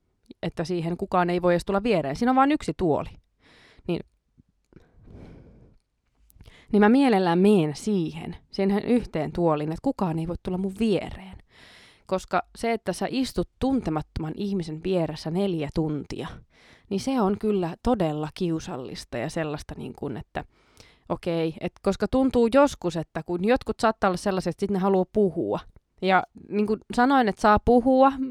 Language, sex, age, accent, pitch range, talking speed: Finnish, female, 20-39, native, 170-215 Hz, 155 wpm